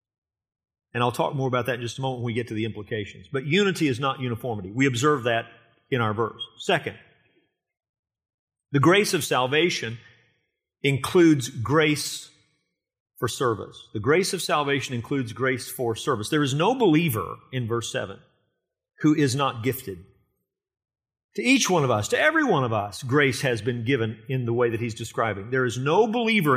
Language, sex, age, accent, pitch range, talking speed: English, male, 50-69, American, 120-150 Hz, 180 wpm